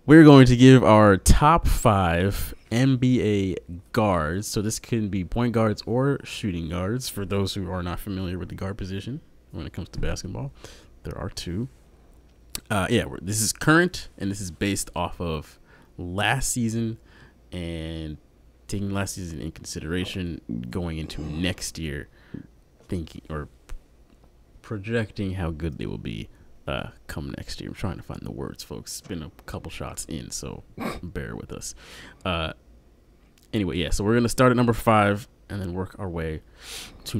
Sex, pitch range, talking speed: male, 80-110 Hz, 170 wpm